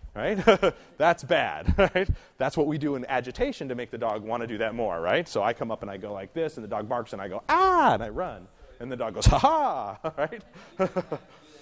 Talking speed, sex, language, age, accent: 240 wpm, male, English, 30-49, American